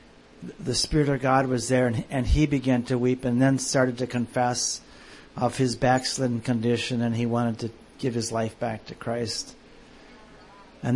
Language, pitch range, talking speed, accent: English, 115-130 Hz, 175 wpm, American